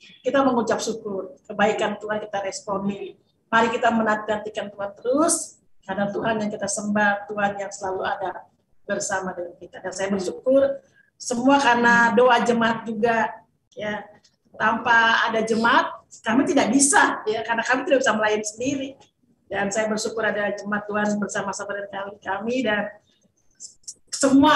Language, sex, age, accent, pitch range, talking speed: Indonesian, female, 40-59, native, 215-275 Hz, 140 wpm